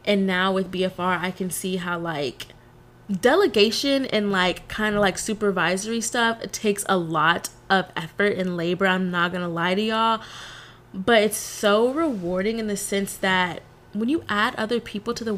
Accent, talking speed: American, 180 wpm